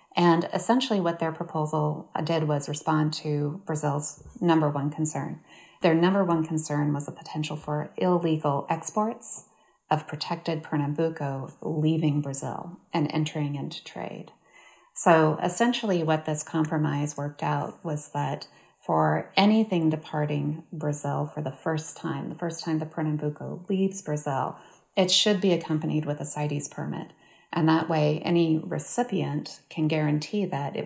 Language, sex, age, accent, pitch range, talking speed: English, female, 30-49, American, 150-175 Hz, 140 wpm